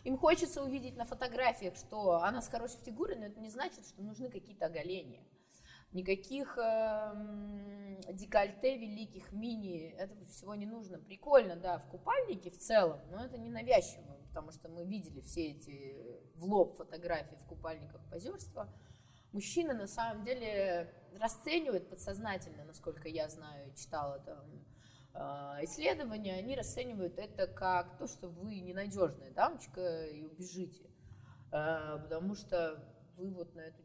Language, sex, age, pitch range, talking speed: Russian, female, 20-39, 160-210 Hz, 140 wpm